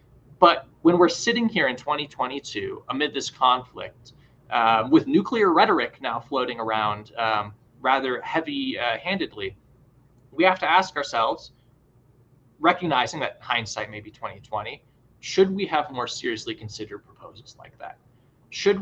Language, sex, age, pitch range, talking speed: English, male, 20-39, 120-155 Hz, 135 wpm